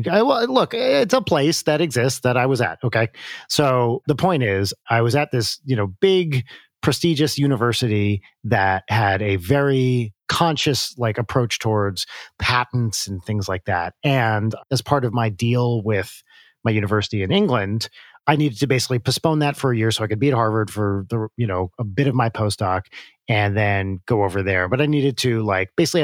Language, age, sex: English, 40-59, male